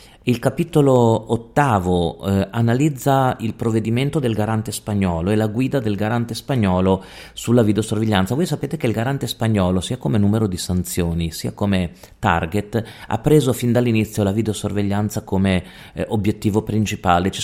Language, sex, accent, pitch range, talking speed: Italian, male, native, 95-115 Hz, 150 wpm